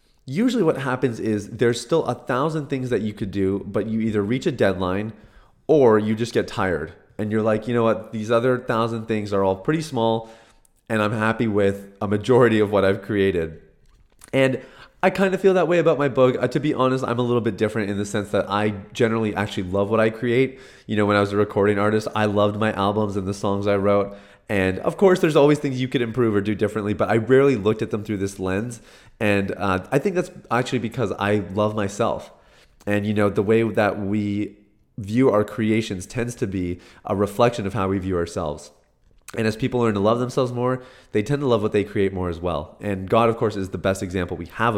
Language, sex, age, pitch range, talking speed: English, male, 30-49, 100-120 Hz, 235 wpm